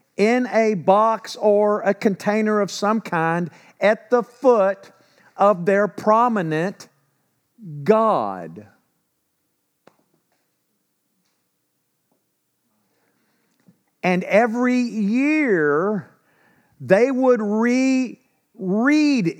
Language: English